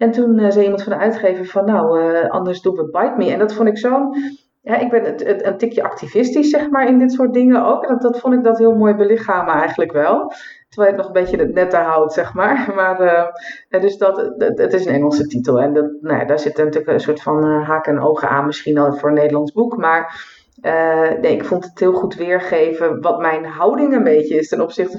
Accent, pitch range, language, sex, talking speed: Dutch, 160-215 Hz, Dutch, female, 245 wpm